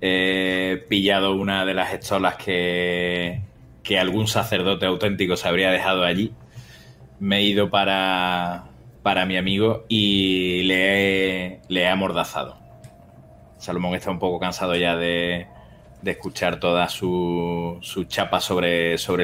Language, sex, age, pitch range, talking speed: Spanish, male, 30-49, 90-105 Hz, 130 wpm